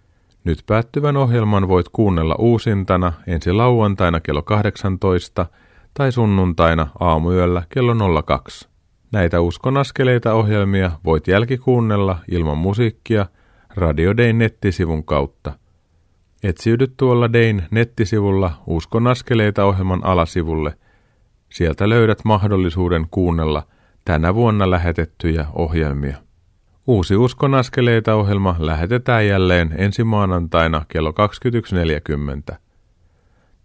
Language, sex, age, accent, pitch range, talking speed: Finnish, male, 40-59, native, 85-115 Hz, 85 wpm